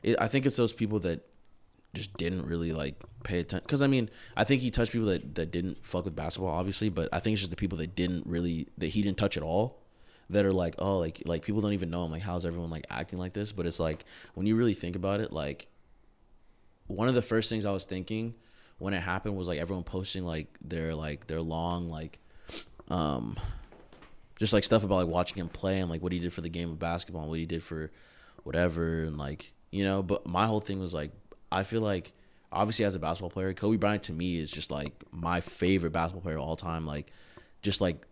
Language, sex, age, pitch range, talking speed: English, male, 20-39, 85-100 Hz, 240 wpm